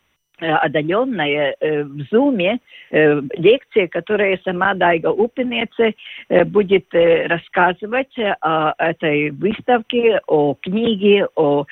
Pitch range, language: 165-225 Hz, Russian